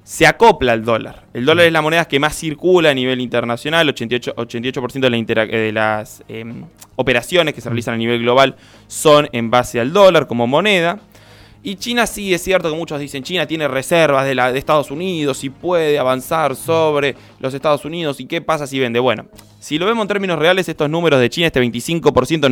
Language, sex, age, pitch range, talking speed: Spanish, male, 20-39, 120-170 Hz, 195 wpm